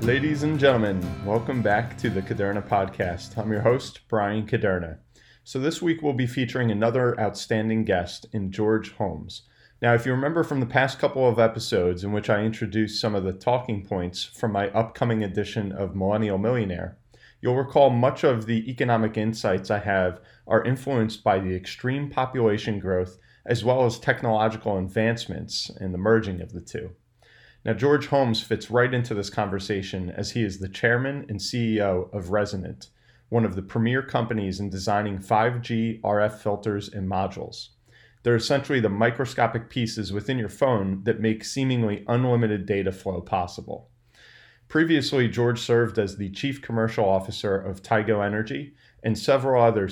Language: English